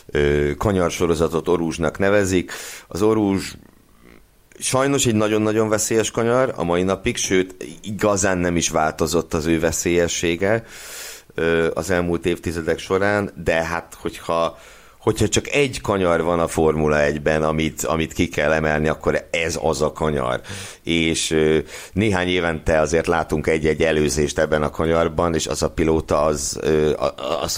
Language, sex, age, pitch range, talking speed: Hungarian, male, 60-79, 75-95 Hz, 135 wpm